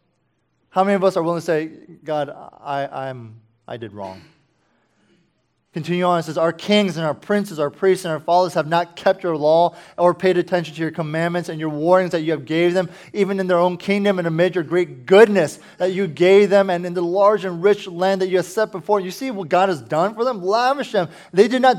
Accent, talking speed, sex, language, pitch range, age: American, 235 wpm, male, English, 145-195 Hz, 20-39